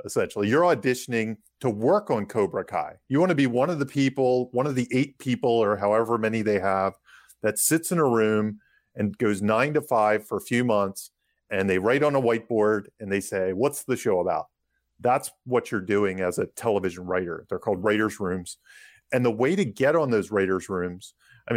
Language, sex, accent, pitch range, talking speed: English, male, American, 100-135 Hz, 210 wpm